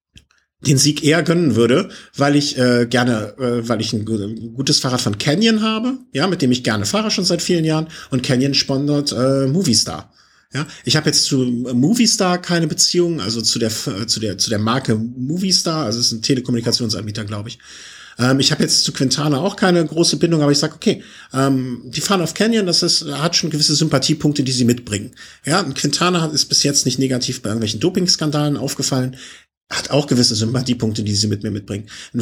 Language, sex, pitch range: German, male, 120-160 Hz